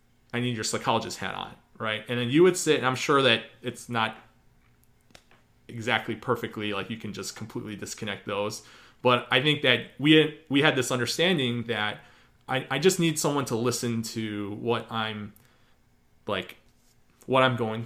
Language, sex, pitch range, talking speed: English, male, 110-130 Hz, 175 wpm